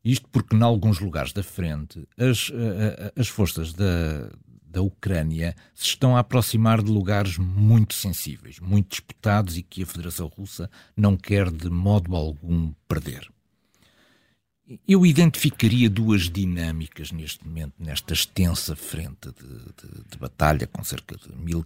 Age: 60-79